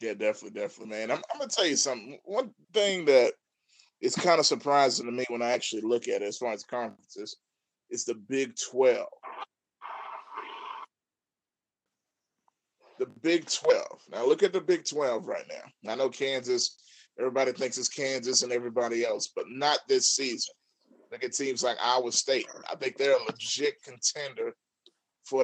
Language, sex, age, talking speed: English, male, 30-49, 170 wpm